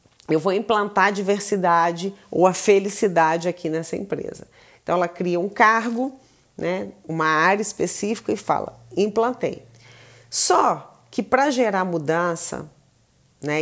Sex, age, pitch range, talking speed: female, 40-59, 170-220 Hz, 130 wpm